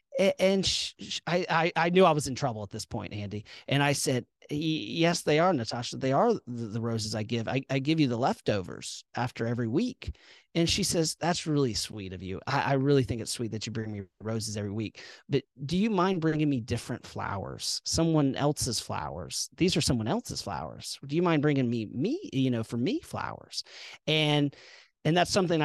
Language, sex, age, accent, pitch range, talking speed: English, male, 40-59, American, 115-150 Hz, 205 wpm